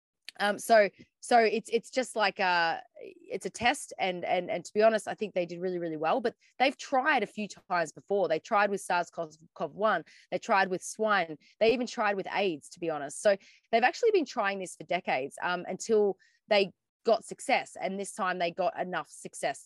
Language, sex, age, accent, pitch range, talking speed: English, female, 20-39, Australian, 170-220 Hz, 205 wpm